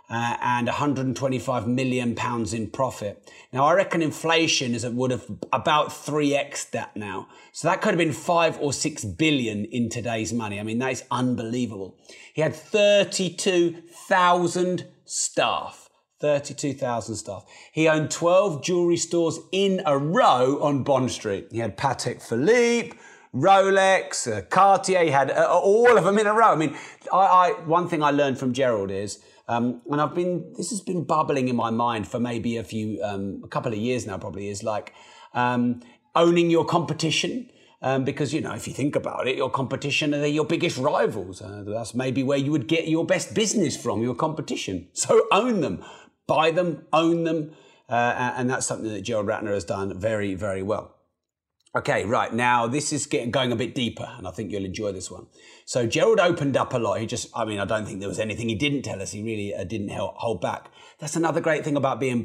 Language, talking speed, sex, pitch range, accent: English, 195 wpm, male, 115-165 Hz, British